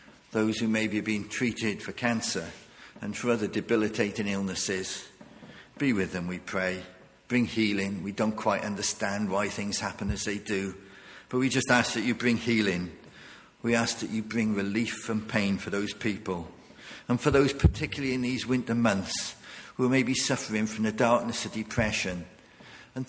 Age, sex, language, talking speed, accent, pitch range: 50-69, male, English, 175 wpm, British, 100-120 Hz